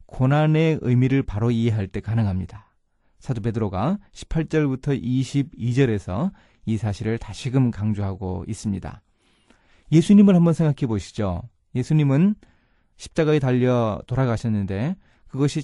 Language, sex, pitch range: Korean, male, 110-150 Hz